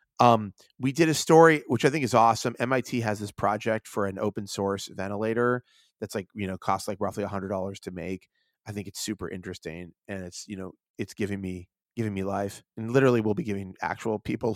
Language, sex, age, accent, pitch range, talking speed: English, male, 30-49, American, 100-130 Hz, 220 wpm